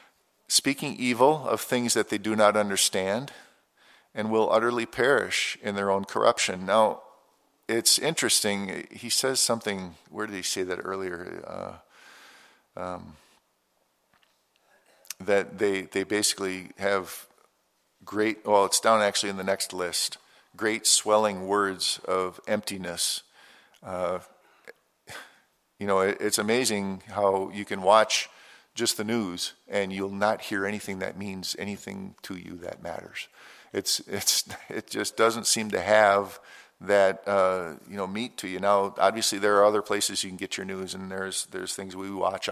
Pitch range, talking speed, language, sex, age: 95-105 Hz, 150 wpm, English, male, 50-69